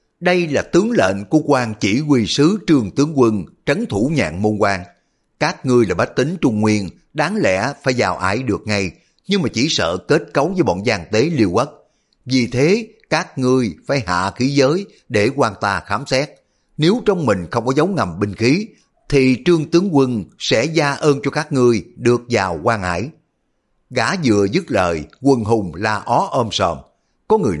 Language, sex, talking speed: Vietnamese, male, 200 wpm